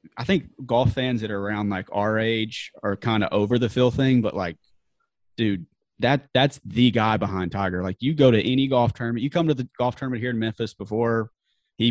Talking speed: 220 wpm